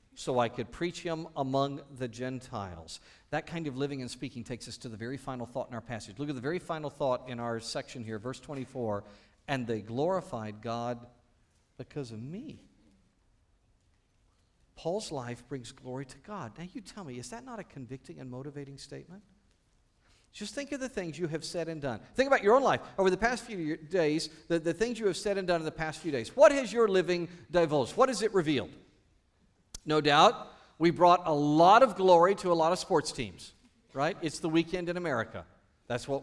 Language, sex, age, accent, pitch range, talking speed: English, male, 50-69, American, 125-170 Hz, 205 wpm